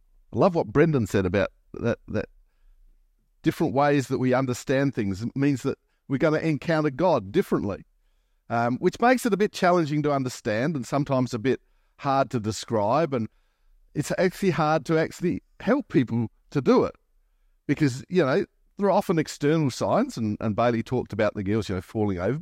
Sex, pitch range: male, 120-185 Hz